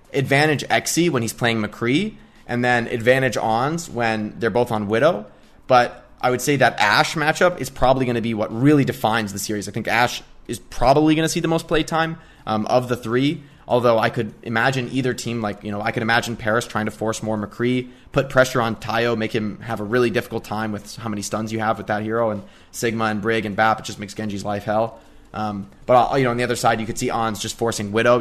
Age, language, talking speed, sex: 20-39, English, 245 wpm, male